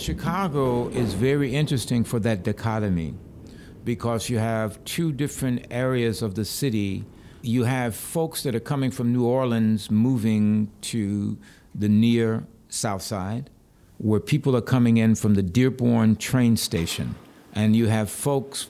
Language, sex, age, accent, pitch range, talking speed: French, male, 60-79, American, 100-120 Hz, 145 wpm